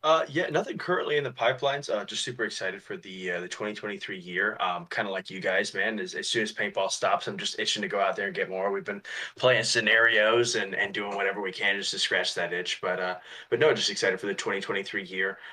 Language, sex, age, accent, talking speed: English, male, 20-39, American, 250 wpm